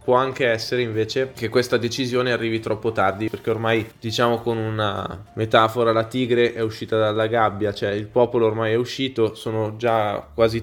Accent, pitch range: native, 110-120 Hz